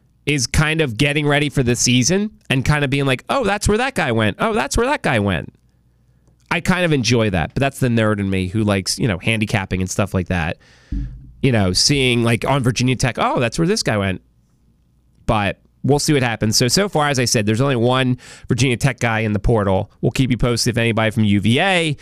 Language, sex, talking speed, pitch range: English, male, 235 wpm, 105-140 Hz